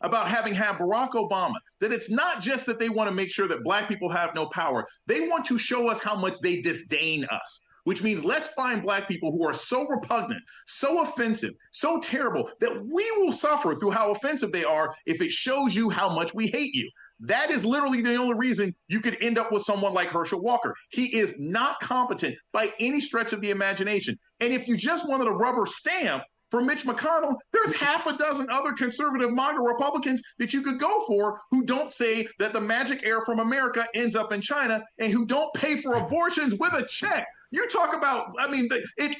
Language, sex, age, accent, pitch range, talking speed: English, male, 30-49, American, 215-295 Hz, 215 wpm